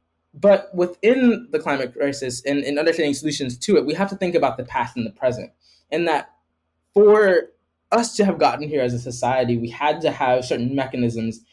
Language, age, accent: English, 20-39, American